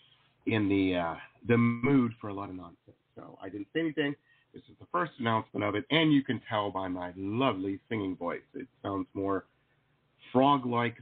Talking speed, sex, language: 190 wpm, male, English